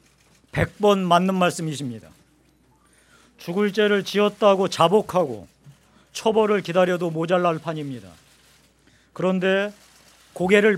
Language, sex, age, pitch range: Korean, male, 40-59, 160-205 Hz